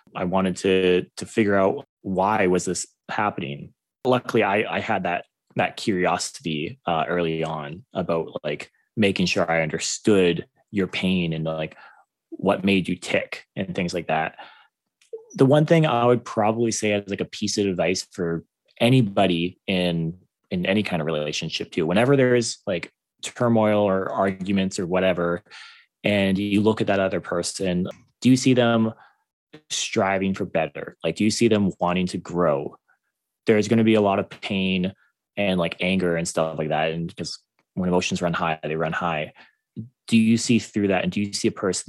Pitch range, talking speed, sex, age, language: 85-105 Hz, 180 wpm, male, 20-39, English